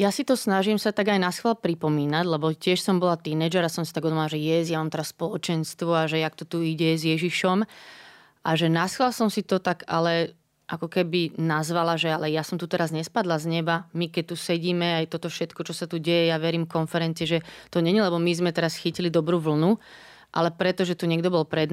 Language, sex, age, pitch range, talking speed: Slovak, female, 30-49, 160-175 Hz, 235 wpm